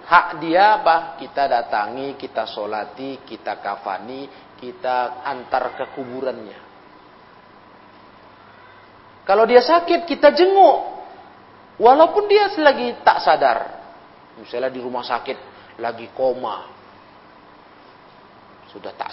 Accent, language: native, Indonesian